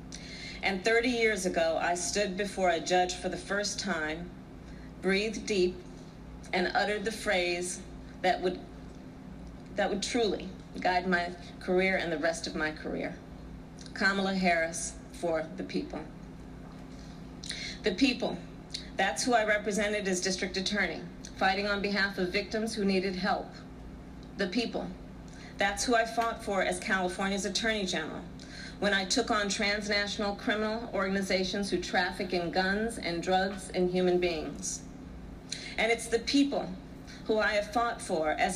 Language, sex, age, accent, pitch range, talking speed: English, female, 40-59, American, 165-210 Hz, 145 wpm